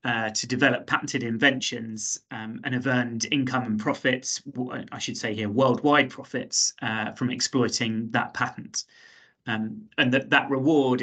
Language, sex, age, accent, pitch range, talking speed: English, male, 30-49, British, 115-135 Hz, 150 wpm